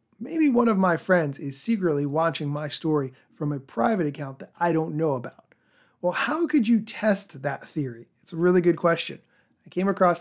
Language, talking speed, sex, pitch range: English, 200 wpm, male, 145-200 Hz